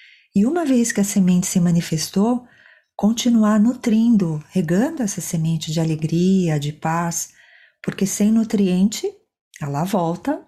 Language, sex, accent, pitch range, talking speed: Portuguese, female, Brazilian, 160-210 Hz, 125 wpm